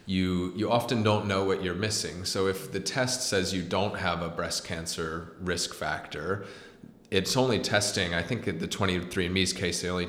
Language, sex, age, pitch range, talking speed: English, male, 30-49, 85-95 Hz, 190 wpm